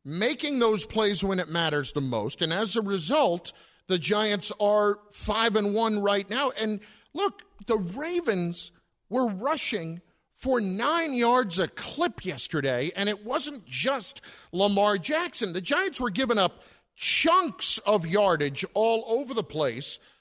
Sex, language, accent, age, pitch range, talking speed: male, English, American, 50-69, 180-245 Hz, 150 wpm